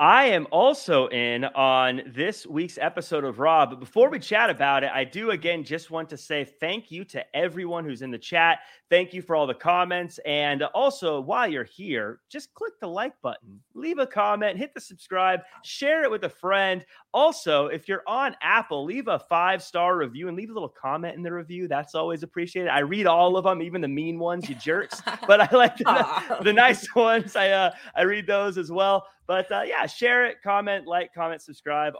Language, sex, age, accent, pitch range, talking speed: English, male, 30-49, American, 150-195 Hz, 210 wpm